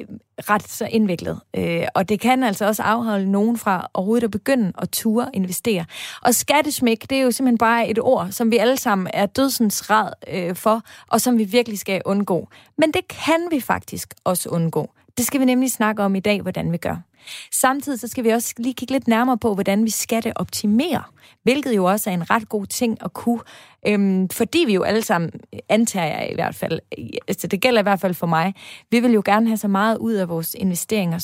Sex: female